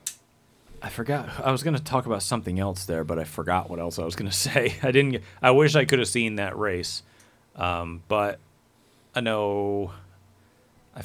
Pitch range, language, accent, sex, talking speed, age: 90-125 Hz, English, American, male, 200 wpm, 30-49